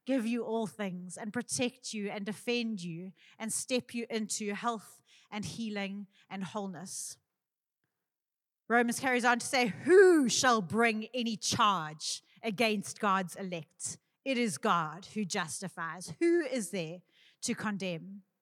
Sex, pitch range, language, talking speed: female, 195-265 Hz, English, 135 wpm